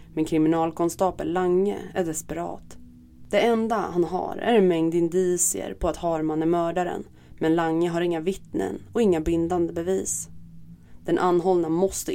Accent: native